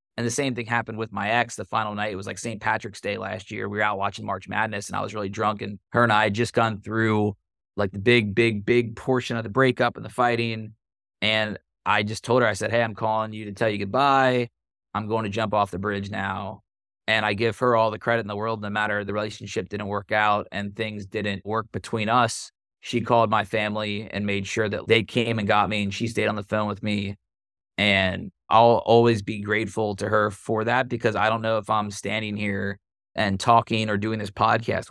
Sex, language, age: male, English, 20-39